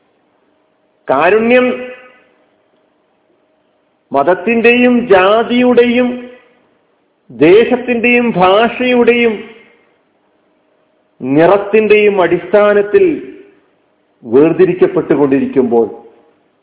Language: Malayalam